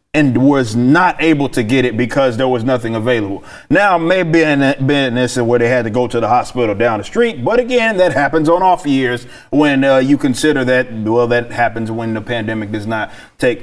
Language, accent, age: English, American, 30-49